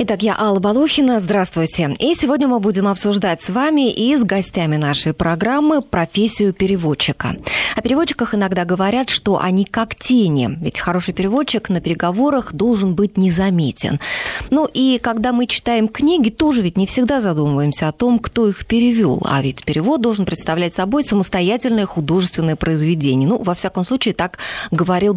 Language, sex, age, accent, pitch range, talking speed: Russian, female, 20-39, native, 165-235 Hz, 155 wpm